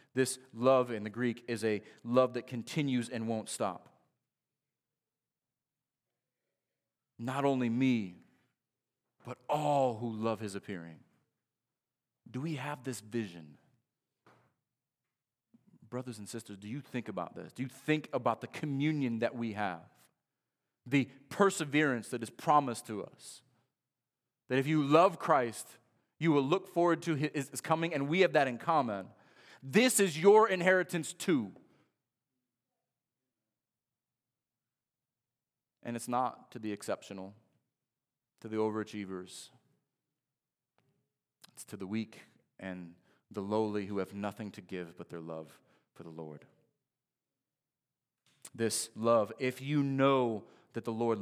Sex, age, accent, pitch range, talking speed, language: male, 30-49, American, 110-140 Hz, 130 wpm, English